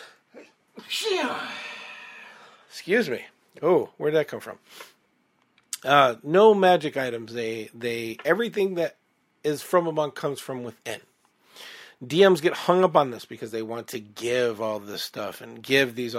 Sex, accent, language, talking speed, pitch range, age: male, American, English, 140 wpm, 115-150 Hz, 40-59